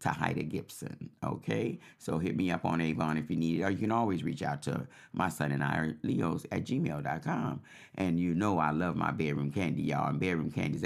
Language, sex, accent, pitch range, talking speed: English, male, American, 80-95 Hz, 225 wpm